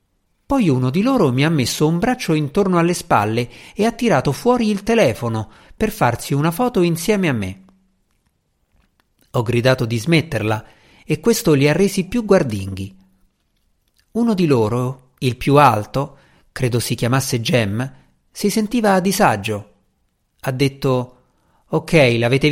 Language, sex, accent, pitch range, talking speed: Italian, male, native, 115-180 Hz, 145 wpm